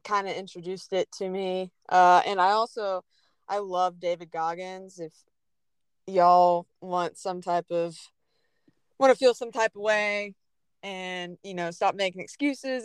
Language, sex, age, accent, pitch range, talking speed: English, female, 20-39, American, 175-210 Hz, 155 wpm